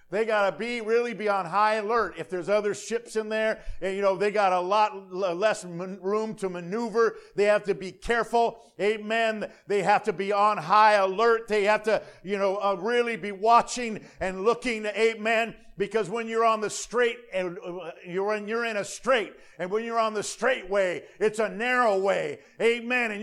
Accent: American